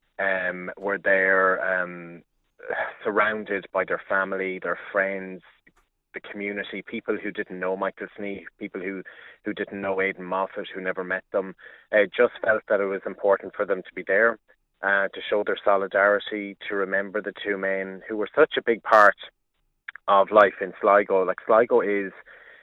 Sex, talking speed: male, 165 wpm